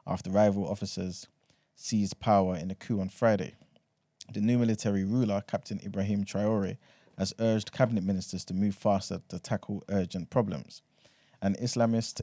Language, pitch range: English, 95-110 Hz